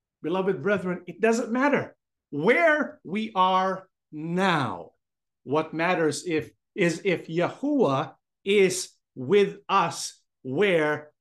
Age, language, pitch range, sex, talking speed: 50-69, English, 155-205 Hz, male, 100 wpm